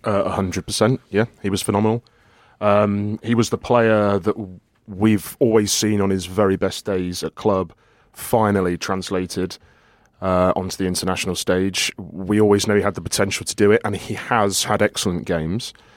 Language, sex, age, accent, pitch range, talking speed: English, male, 30-49, British, 95-110 Hz, 175 wpm